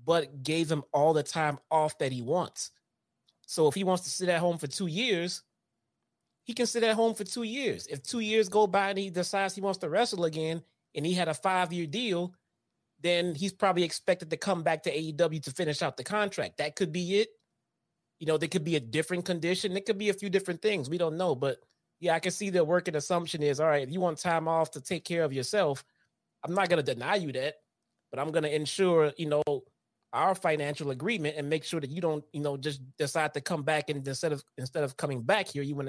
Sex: male